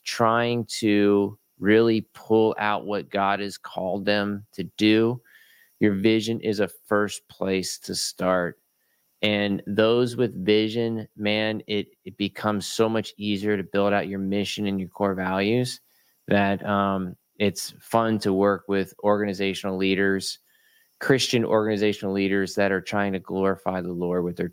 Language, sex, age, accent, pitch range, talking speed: English, male, 20-39, American, 95-105 Hz, 150 wpm